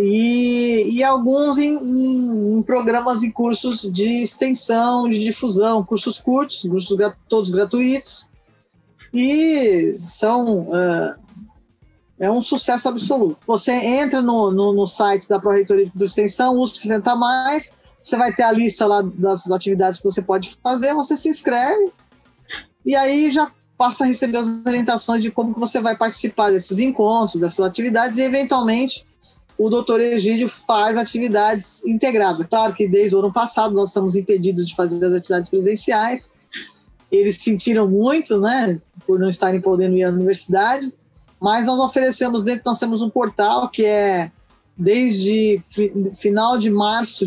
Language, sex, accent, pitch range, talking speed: Portuguese, female, Brazilian, 200-245 Hz, 150 wpm